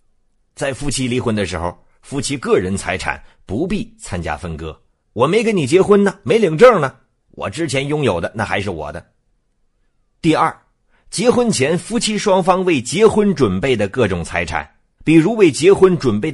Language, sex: Chinese, male